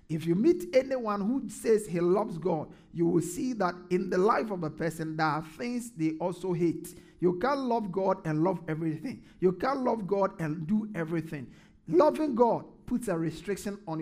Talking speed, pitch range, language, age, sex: 195 wpm, 170-215 Hz, English, 50-69, male